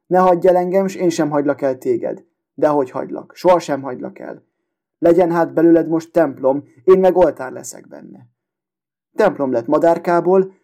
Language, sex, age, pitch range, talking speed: Hungarian, male, 30-49, 145-180 Hz, 165 wpm